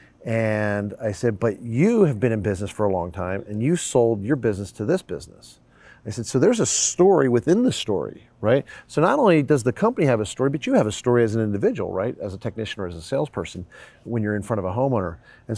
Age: 40-59